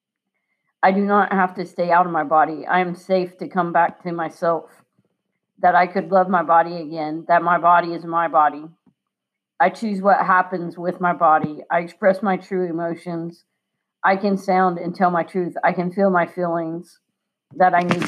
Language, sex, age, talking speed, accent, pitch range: English, female, 50-69, 195 wpm, American, 165-180 Hz